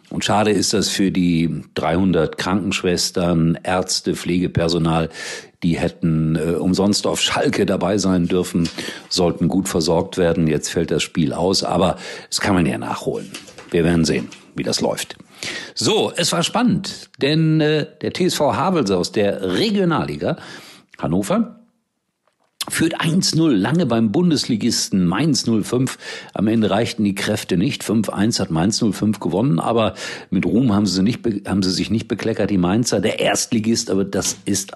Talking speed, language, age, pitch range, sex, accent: 160 wpm, German, 50-69, 90-120 Hz, male, German